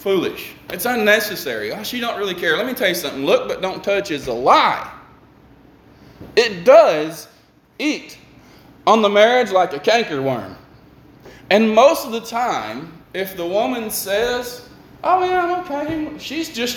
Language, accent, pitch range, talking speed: English, American, 150-245 Hz, 155 wpm